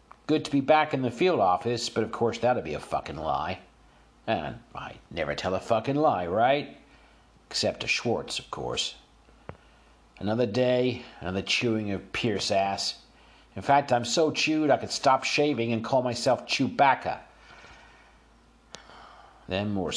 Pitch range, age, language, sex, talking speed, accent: 95-120 Hz, 50-69, English, male, 150 wpm, American